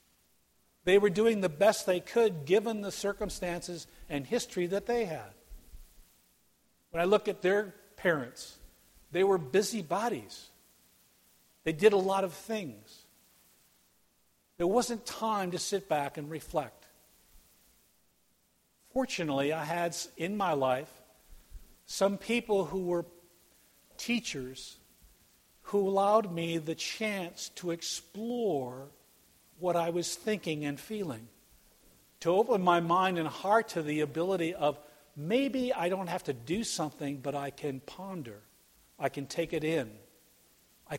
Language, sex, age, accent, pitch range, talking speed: English, male, 50-69, American, 145-195 Hz, 130 wpm